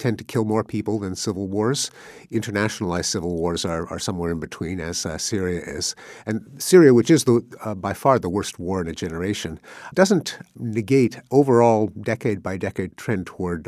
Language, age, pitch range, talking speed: English, 50-69, 85-110 Hz, 180 wpm